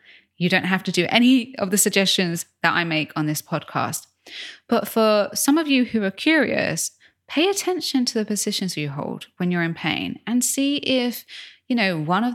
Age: 20-39